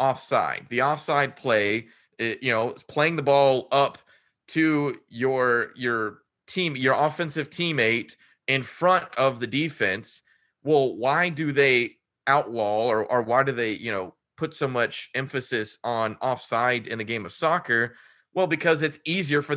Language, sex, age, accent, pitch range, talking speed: English, male, 30-49, American, 120-145 Hz, 155 wpm